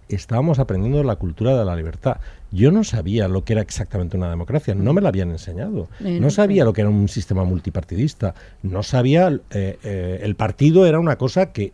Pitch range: 95-135 Hz